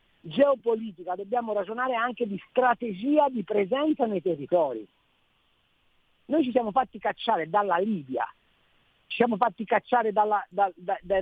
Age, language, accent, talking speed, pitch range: 50-69, Italian, native, 120 wpm, 190-245 Hz